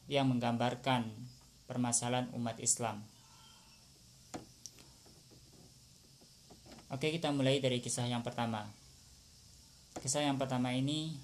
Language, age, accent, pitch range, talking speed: Indonesian, 20-39, native, 120-135 Hz, 85 wpm